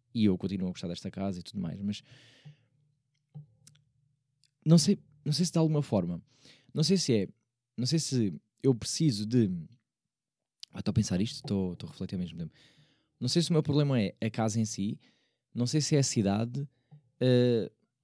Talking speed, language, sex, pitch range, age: 180 wpm, Portuguese, male, 105-140 Hz, 20-39